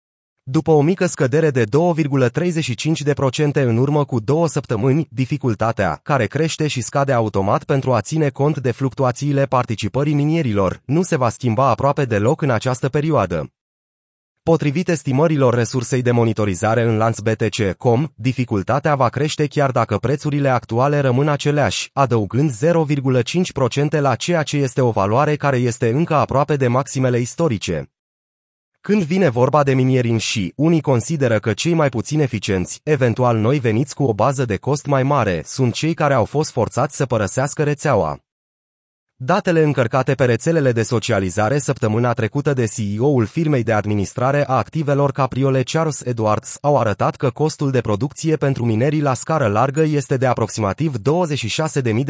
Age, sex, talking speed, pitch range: 30-49, male, 150 wpm, 115-150 Hz